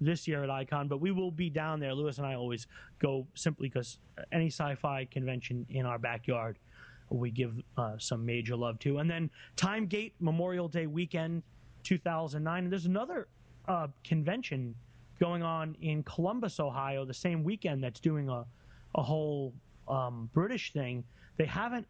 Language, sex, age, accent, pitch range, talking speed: English, male, 30-49, American, 130-175 Hz, 165 wpm